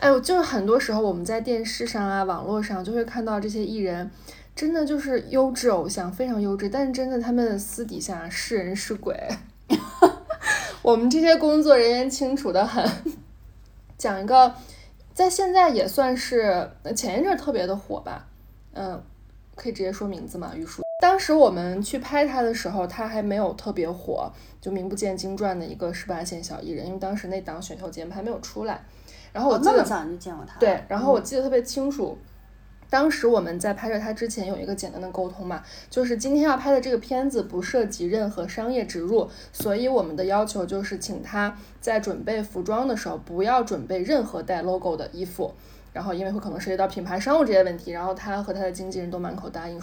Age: 20-39